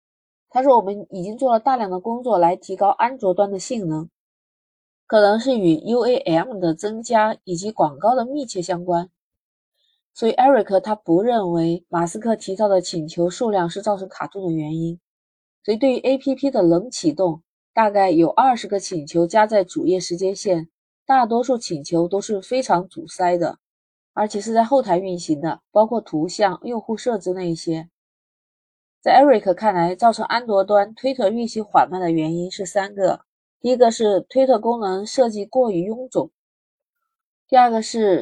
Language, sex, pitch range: Chinese, female, 175-230 Hz